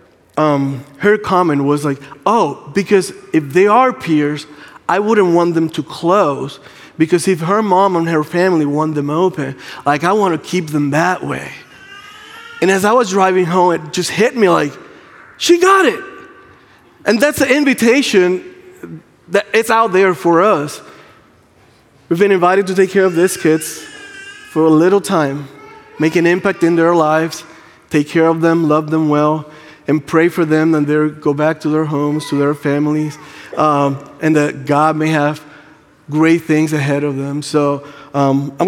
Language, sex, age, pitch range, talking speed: English, male, 20-39, 150-190 Hz, 175 wpm